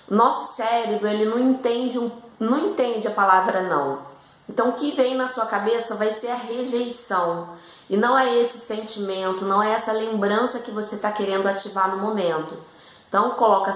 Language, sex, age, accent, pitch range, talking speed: Portuguese, female, 20-39, Brazilian, 185-235 Hz, 175 wpm